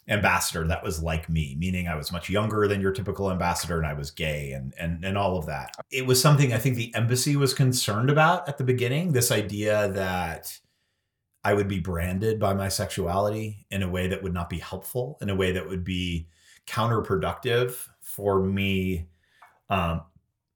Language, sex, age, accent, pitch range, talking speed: Danish, male, 30-49, American, 95-130 Hz, 190 wpm